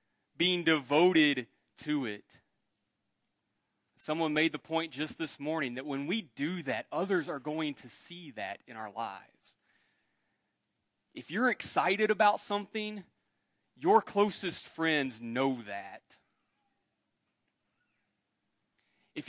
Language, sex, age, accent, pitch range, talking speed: English, male, 30-49, American, 150-210 Hz, 110 wpm